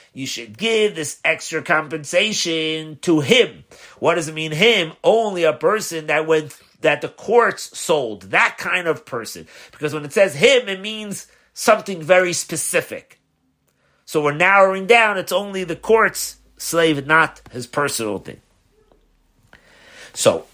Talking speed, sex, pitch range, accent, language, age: 145 wpm, male, 150-210 Hz, American, English, 40-59